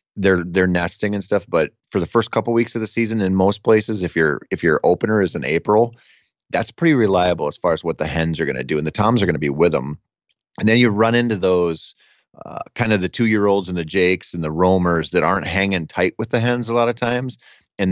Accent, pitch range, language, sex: American, 85-110 Hz, English, male